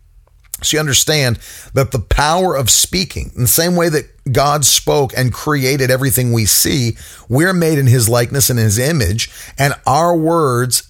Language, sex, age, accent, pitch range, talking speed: English, male, 40-59, American, 95-135 Hz, 170 wpm